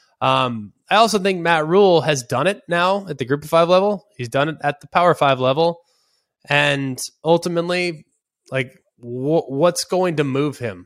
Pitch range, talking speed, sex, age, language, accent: 135-175 Hz, 180 wpm, male, 20-39, English, American